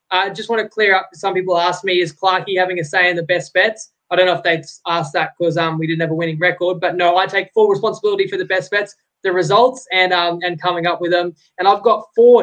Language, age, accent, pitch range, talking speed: English, 20-39, Australian, 180-215 Hz, 275 wpm